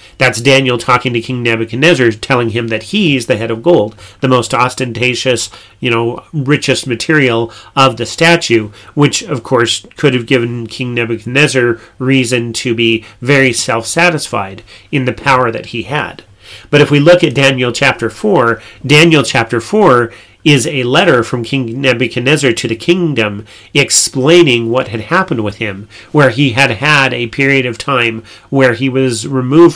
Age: 40-59